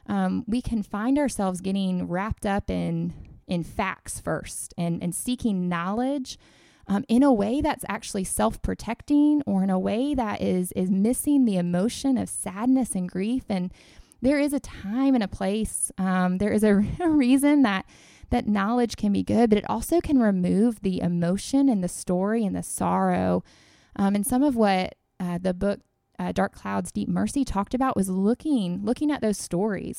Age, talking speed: 20-39, 180 wpm